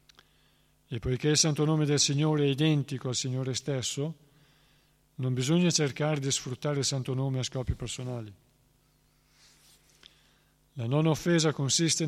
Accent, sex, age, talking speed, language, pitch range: native, male, 50-69, 130 wpm, Italian, 125-145 Hz